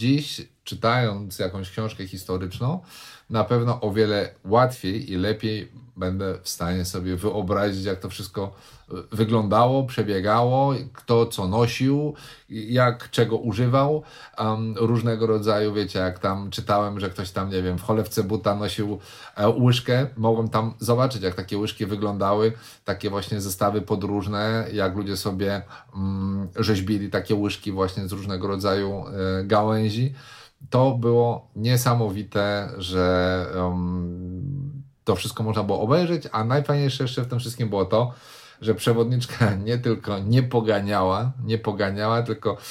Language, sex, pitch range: Polish, male, 100-120 Hz